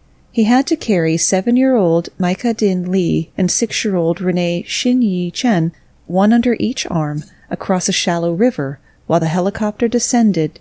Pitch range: 165-210 Hz